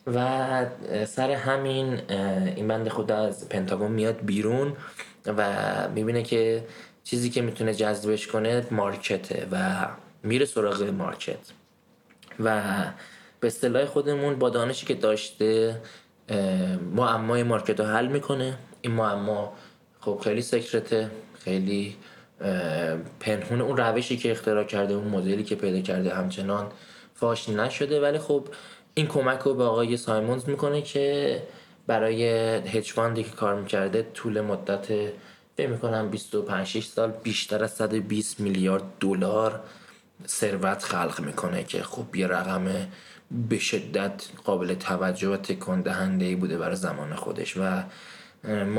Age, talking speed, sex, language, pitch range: 20-39, 120 wpm, male, Persian, 100-120 Hz